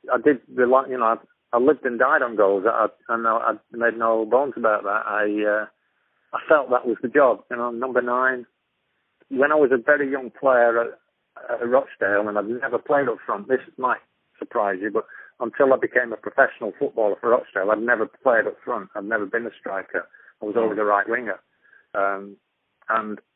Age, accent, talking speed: 50-69, British, 205 wpm